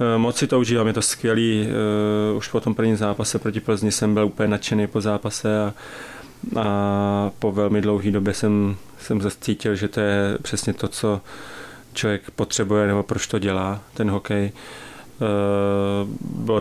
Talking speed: 155 wpm